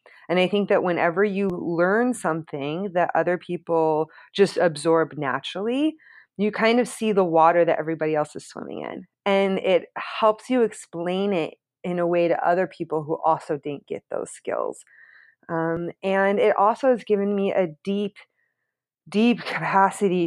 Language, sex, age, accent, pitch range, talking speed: English, female, 20-39, American, 165-205 Hz, 165 wpm